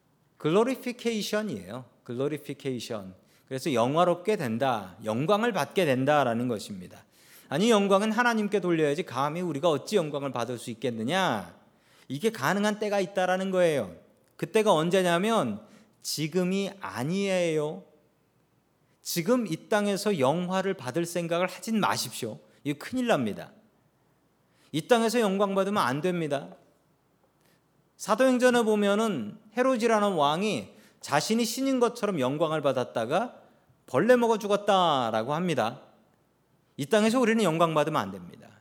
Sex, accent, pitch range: male, native, 145-210 Hz